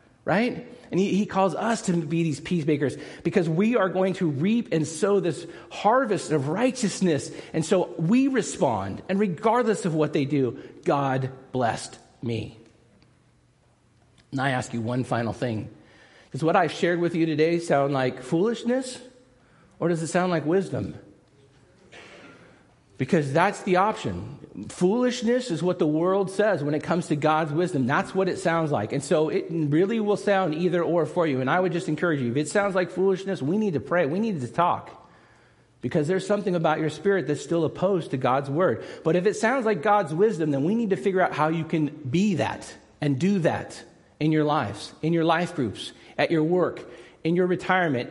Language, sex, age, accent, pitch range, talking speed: English, male, 50-69, American, 135-185 Hz, 190 wpm